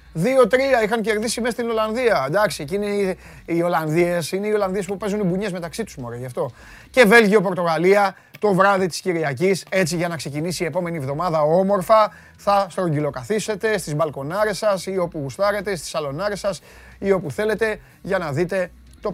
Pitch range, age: 150-200 Hz, 30-49